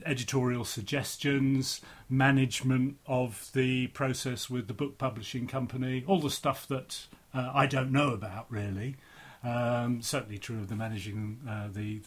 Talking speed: 145 wpm